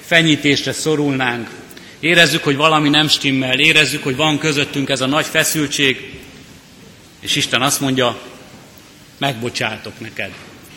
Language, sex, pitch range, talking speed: Hungarian, male, 125-150 Hz, 115 wpm